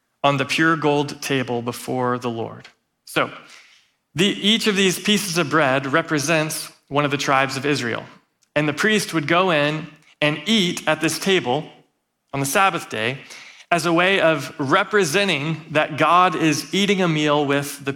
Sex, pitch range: male, 140-165 Hz